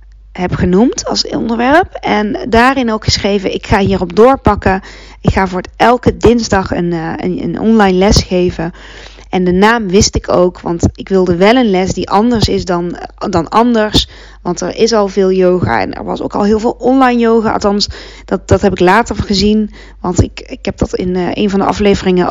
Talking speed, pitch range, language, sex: 200 wpm, 185-225 Hz, Dutch, female